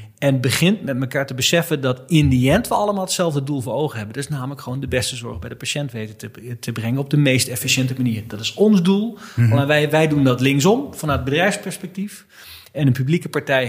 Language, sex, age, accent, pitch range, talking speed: Dutch, male, 40-59, Dutch, 125-160 Hz, 230 wpm